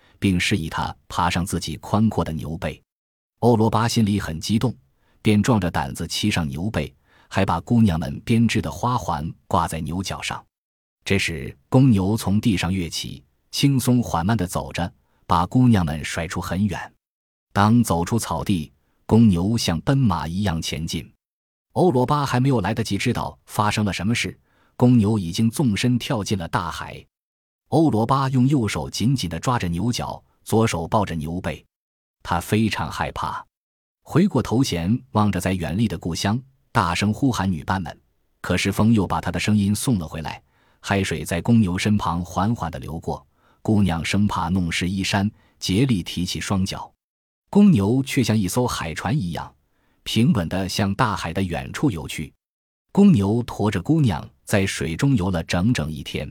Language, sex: Chinese, male